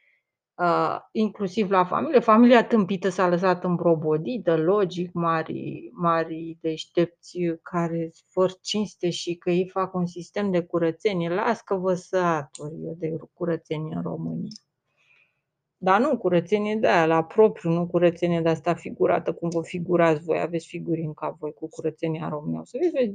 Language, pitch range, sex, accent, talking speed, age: Romanian, 170-235 Hz, female, native, 150 wpm, 30-49